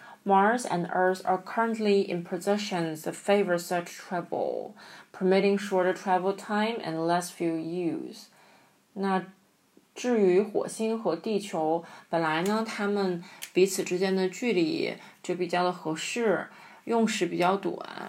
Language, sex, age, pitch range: Chinese, female, 20-39, 170-200 Hz